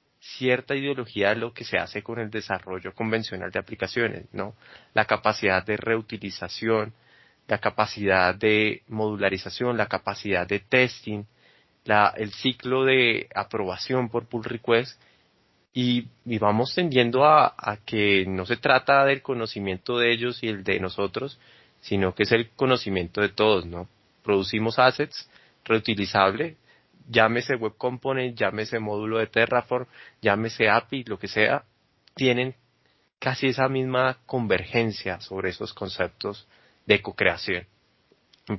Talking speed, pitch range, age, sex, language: 130 wpm, 105-130 Hz, 20-39, male, Spanish